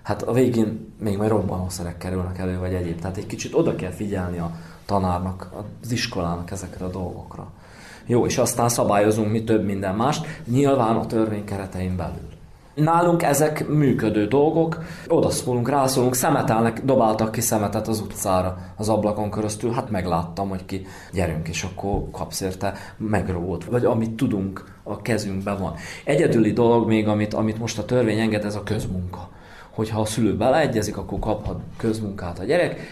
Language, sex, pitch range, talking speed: Hungarian, male, 95-115 Hz, 165 wpm